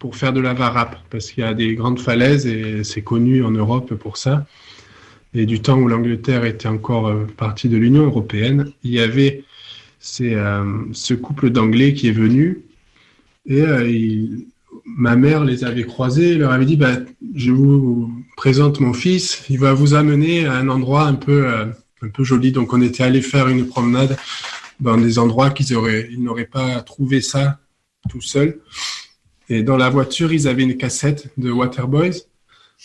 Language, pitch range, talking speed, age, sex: Arabic, 115-140 Hz, 185 wpm, 20-39, male